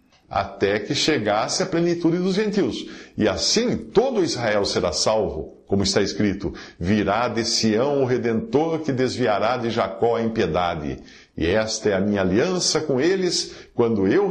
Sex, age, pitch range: male, 50-69, 105-170 Hz